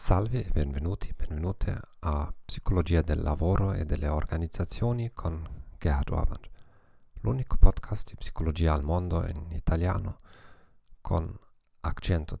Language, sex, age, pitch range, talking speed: Italian, male, 40-59, 80-100 Hz, 110 wpm